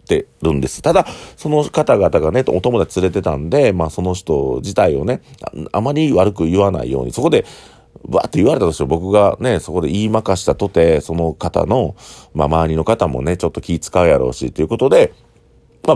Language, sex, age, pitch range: Japanese, male, 40-59, 80-115 Hz